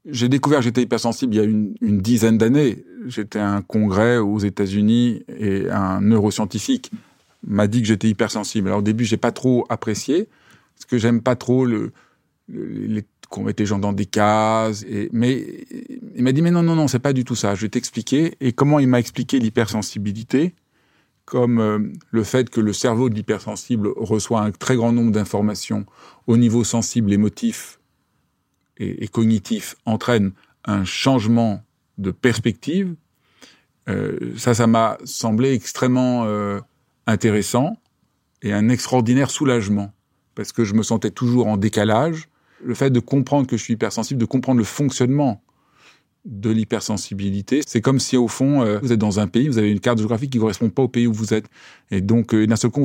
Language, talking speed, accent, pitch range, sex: French, 185 wpm, French, 105-125 Hz, male